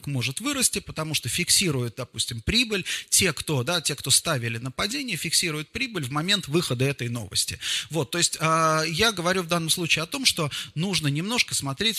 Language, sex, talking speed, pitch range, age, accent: Russian, male, 185 wpm, 125-170 Hz, 30-49, native